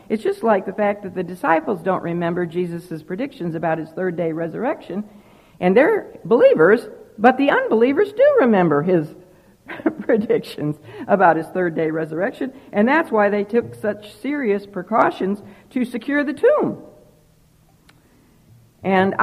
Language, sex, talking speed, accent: English, female, 140 wpm, American